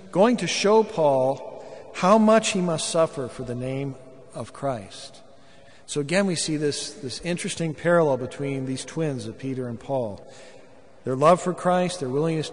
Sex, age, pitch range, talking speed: male, 50-69, 125-165 Hz, 170 wpm